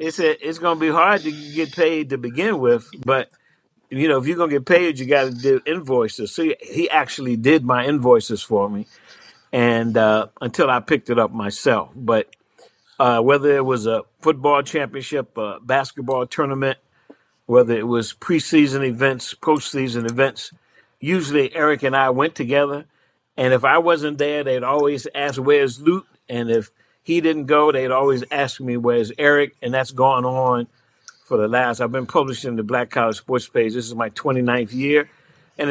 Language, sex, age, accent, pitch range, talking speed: English, male, 50-69, American, 120-145 Hz, 180 wpm